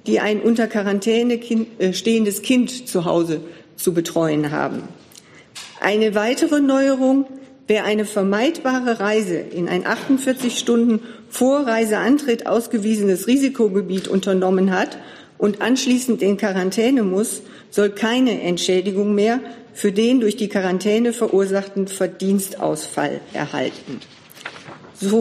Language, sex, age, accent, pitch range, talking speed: German, female, 50-69, German, 200-250 Hz, 110 wpm